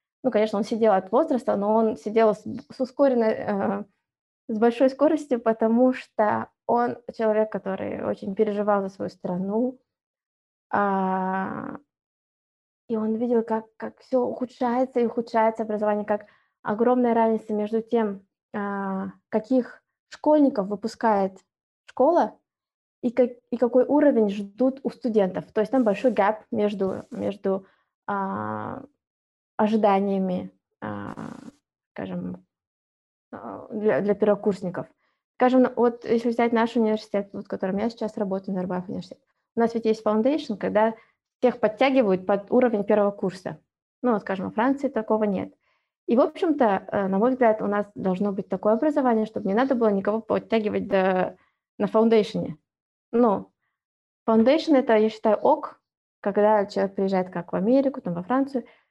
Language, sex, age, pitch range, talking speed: Russian, female, 20-39, 200-240 Hz, 140 wpm